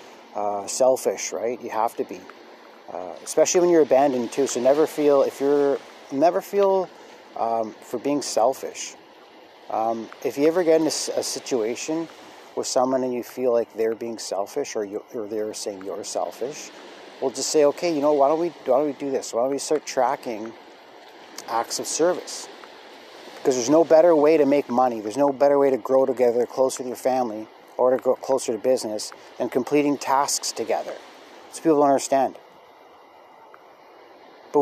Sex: male